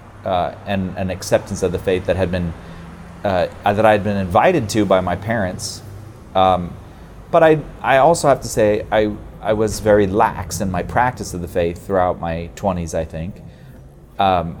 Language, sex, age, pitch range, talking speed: English, male, 30-49, 90-110 Hz, 185 wpm